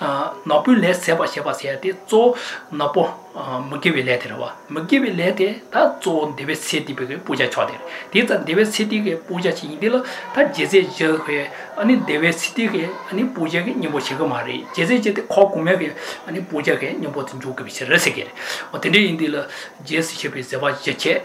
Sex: male